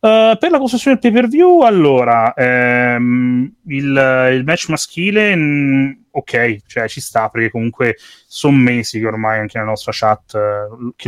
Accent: native